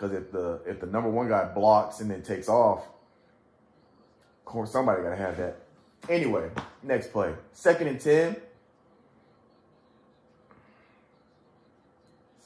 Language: English